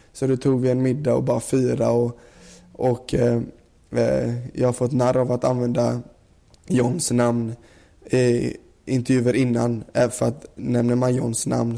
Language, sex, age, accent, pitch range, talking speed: English, male, 20-39, Swedish, 120-135 Hz, 160 wpm